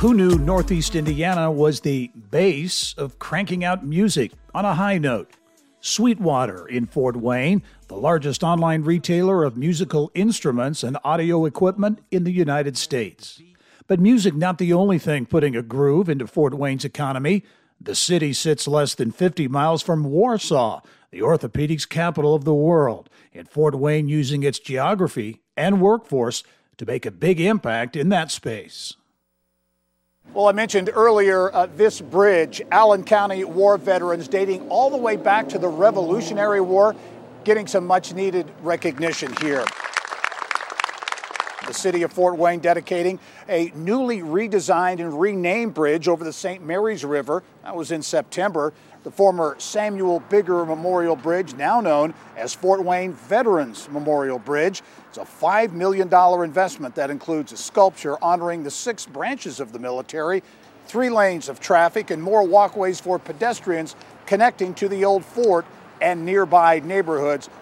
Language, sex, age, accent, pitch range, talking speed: English, male, 60-79, American, 150-195 Hz, 150 wpm